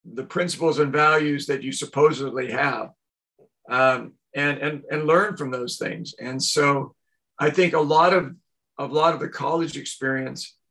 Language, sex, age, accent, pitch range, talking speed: English, male, 50-69, American, 135-160 Hz, 165 wpm